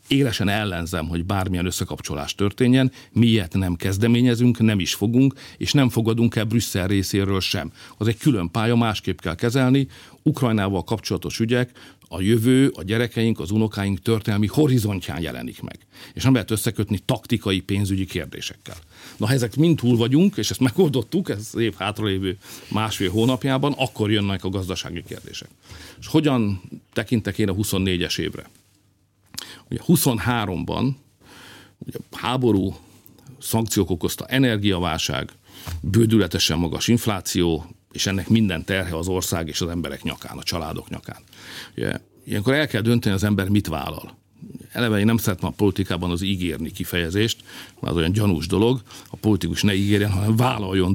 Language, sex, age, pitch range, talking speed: Hungarian, male, 50-69, 95-120 Hz, 145 wpm